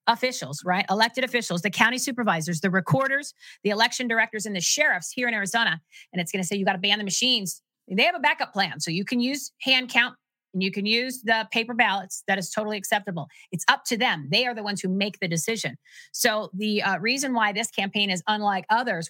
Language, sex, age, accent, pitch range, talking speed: English, female, 40-59, American, 185-235 Hz, 230 wpm